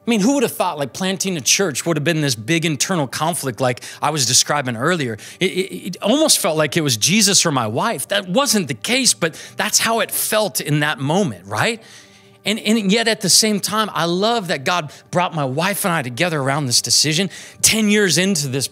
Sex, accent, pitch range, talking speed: male, American, 125-185 Hz, 225 wpm